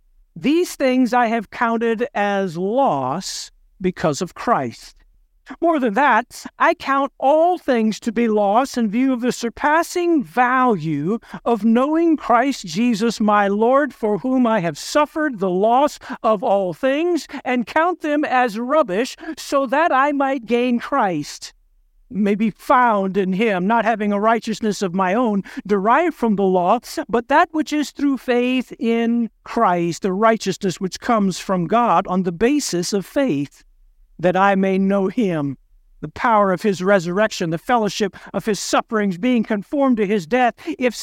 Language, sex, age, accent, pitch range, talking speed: English, male, 50-69, American, 195-270 Hz, 160 wpm